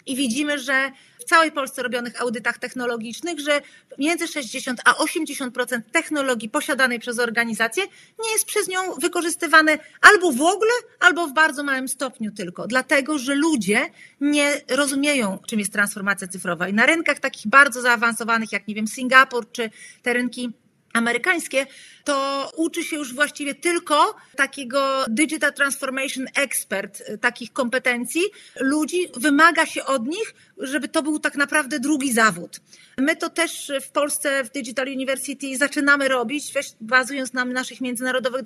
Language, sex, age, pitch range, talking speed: Polish, female, 40-59, 245-300 Hz, 145 wpm